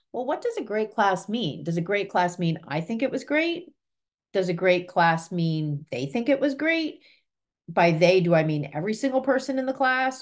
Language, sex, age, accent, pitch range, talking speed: English, female, 40-59, American, 160-220 Hz, 225 wpm